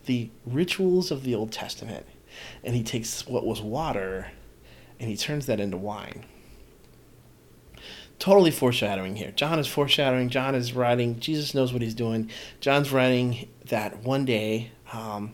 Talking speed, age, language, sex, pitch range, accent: 150 wpm, 30-49, English, male, 110-135 Hz, American